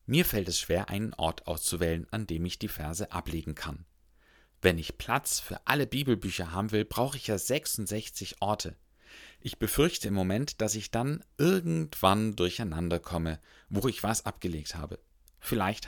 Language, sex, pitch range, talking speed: German, male, 90-110 Hz, 165 wpm